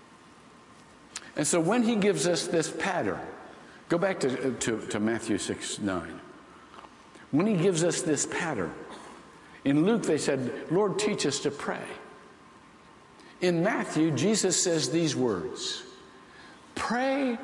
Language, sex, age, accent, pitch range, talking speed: English, male, 60-79, American, 130-210 Hz, 130 wpm